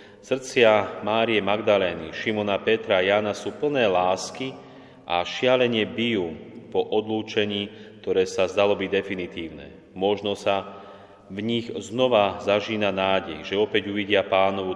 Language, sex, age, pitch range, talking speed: Slovak, male, 30-49, 95-110 Hz, 125 wpm